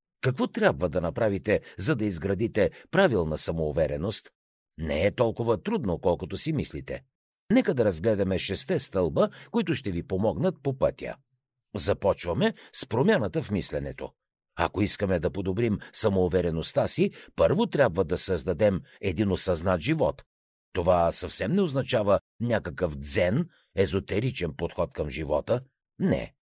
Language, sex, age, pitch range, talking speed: Bulgarian, male, 60-79, 90-130 Hz, 125 wpm